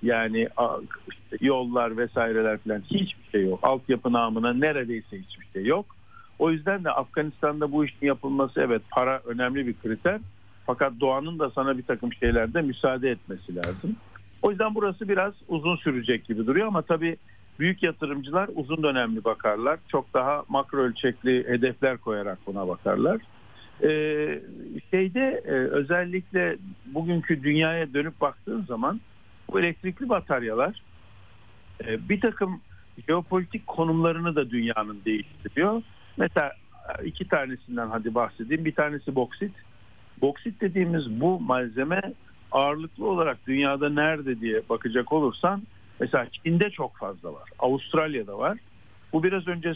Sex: male